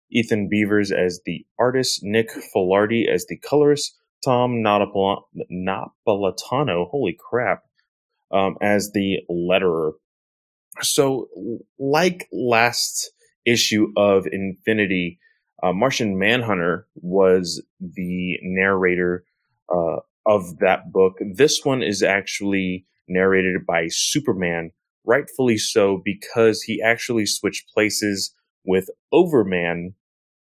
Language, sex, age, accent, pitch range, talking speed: English, male, 20-39, American, 95-115 Hz, 100 wpm